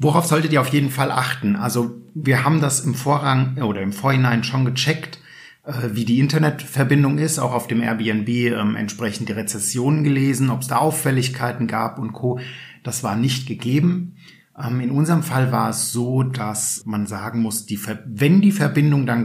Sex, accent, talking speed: male, German, 170 wpm